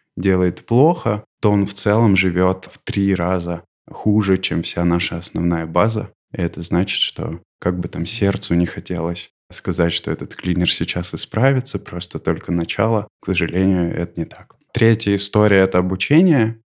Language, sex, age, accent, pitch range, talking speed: Russian, male, 20-39, native, 90-105 Hz, 160 wpm